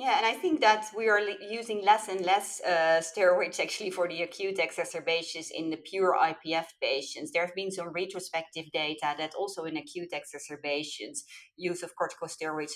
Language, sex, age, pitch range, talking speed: English, female, 30-49, 155-185 Hz, 180 wpm